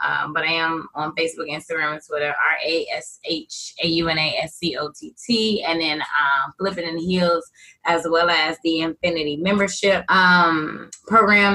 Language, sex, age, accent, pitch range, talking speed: English, female, 20-39, American, 150-170 Hz, 125 wpm